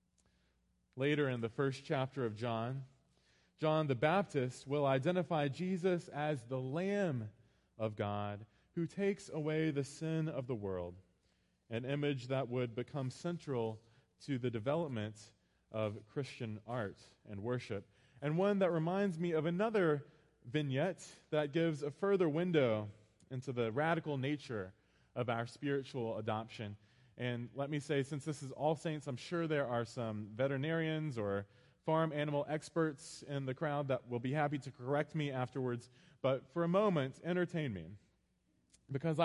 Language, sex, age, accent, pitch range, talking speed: English, male, 20-39, American, 115-160 Hz, 150 wpm